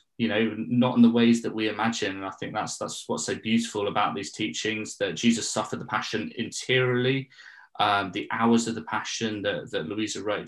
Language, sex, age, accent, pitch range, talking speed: English, male, 20-39, British, 105-120 Hz, 205 wpm